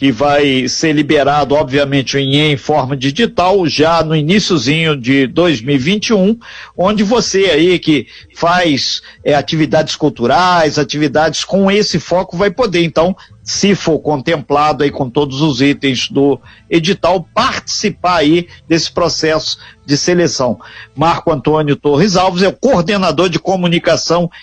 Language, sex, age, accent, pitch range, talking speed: Portuguese, male, 50-69, Brazilian, 150-205 Hz, 130 wpm